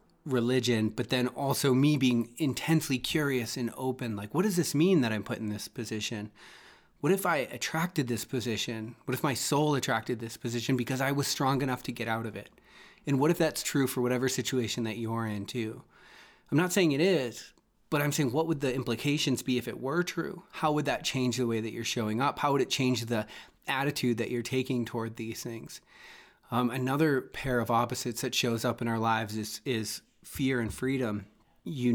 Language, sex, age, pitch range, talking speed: English, male, 30-49, 115-130 Hz, 210 wpm